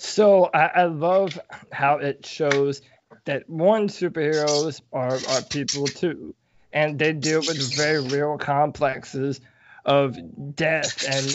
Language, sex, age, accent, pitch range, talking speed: English, male, 20-39, American, 140-155 Hz, 125 wpm